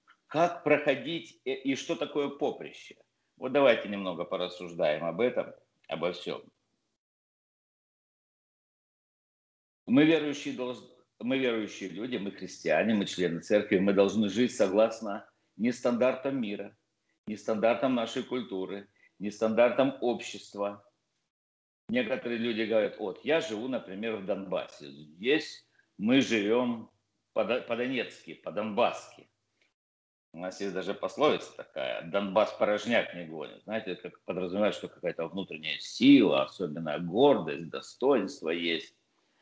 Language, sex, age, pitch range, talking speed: Russian, male, 50-69, 100-140 Hz, 115 wpm